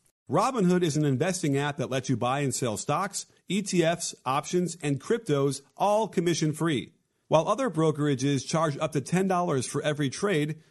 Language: English